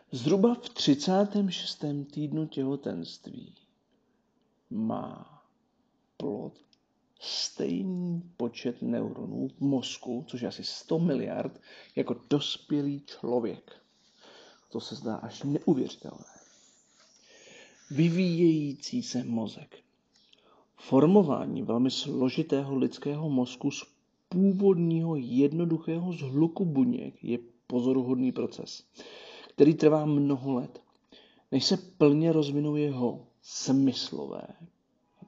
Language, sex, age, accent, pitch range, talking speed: Czech, male, 50-69, native, 130-170 Hz, 90 wpm